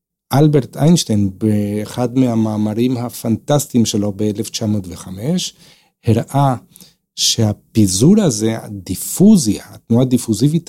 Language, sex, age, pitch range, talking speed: Hebrew, male, 50-69, 110-160 Hz, 75 wpm